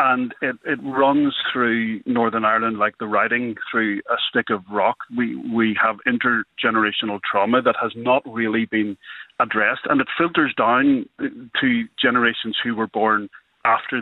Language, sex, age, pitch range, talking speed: English, male, 40-59, 110-145 Hz, 155 wpm